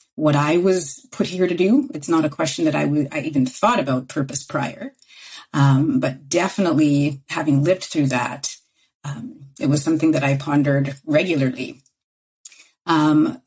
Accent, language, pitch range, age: American, English, 145-190 Hz, 40-59